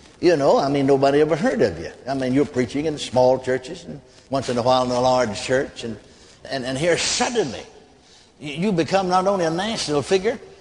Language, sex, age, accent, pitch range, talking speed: English, male, 60-79, American, 135-205 Hz, 210 wpm